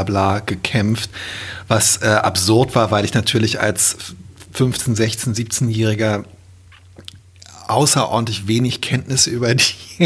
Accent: German